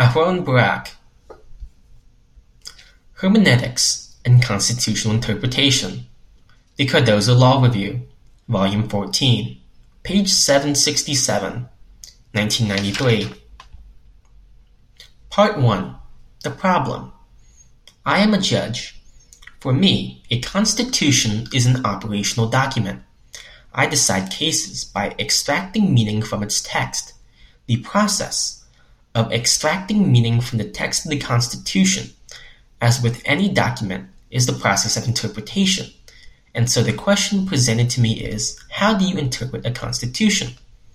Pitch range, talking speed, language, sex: 105-135 Hz, 110 wpm, English, male